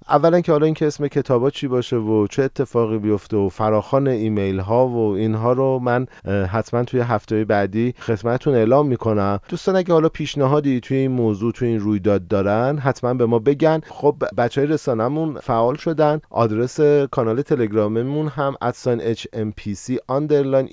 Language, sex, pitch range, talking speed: Persian, male, 110-145 Hz, 155 wpm